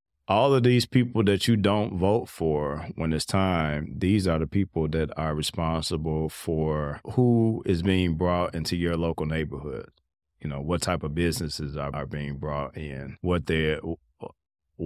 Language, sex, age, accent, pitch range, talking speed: English, male, 30-49, American, 80-100 Hz, 160 wpm